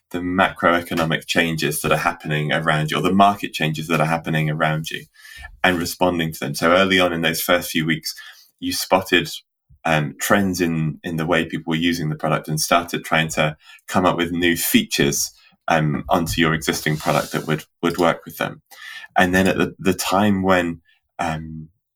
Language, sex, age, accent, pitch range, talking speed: English, male, 20-39, British, 80-90 Hz, 190 wpm